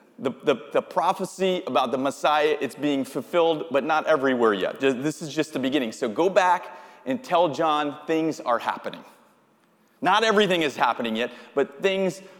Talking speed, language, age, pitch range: 165 wpm, English, 30-49, 140-180 Hz